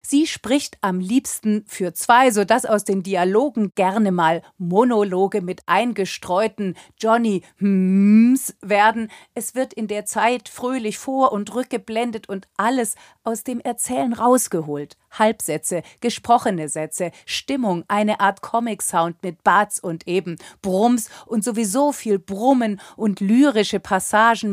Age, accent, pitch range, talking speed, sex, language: 40-59, German, 190-235 Hz, 130 wpm, female, German